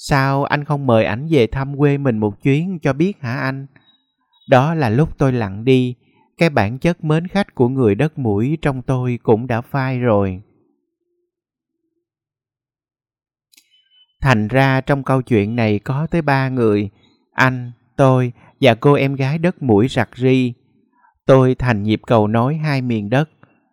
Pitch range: 115-150 Hz